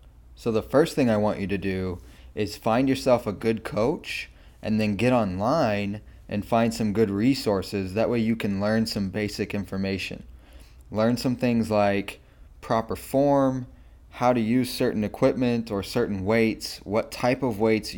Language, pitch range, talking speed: English, 95-115 Hz, 165 wpm